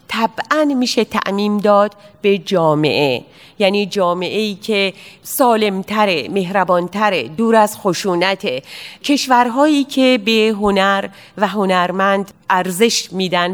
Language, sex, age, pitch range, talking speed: Persian, female, 40-59, 185-220 Hz, 100 wpm